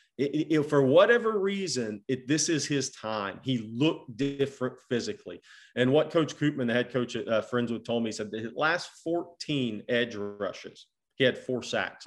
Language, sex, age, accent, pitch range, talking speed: English, male, 40-59, American, 115-145 Hz, 195 wpm